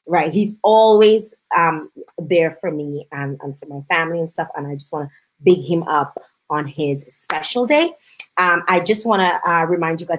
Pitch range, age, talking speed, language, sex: 155-215 Hz, 20-39, 200 wpm, English, female